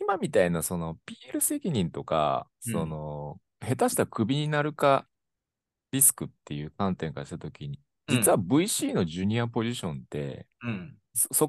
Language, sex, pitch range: Japanese, male, 85-125 Hz